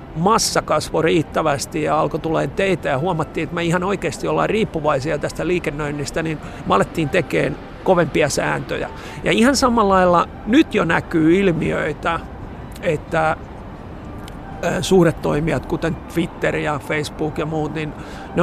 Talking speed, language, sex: 130 wpm, Finnish, male